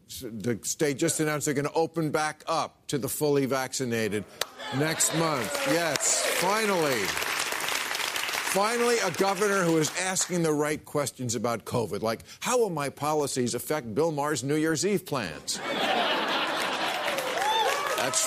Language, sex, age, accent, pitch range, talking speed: English, male, 50-69, American, 125-180 Hz, 140 wpm